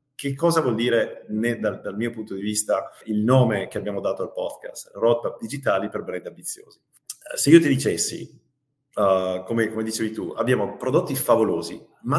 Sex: male